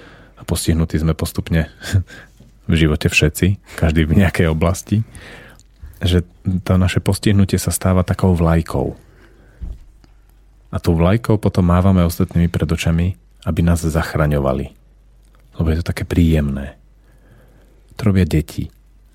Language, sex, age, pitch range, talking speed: Slovak, male, 40-59, 80-100 Hz, 120 wpm